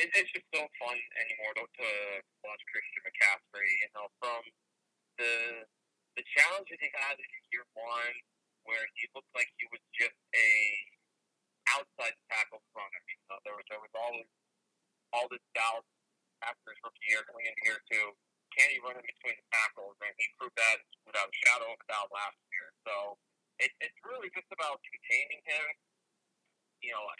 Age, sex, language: 40-59, male, English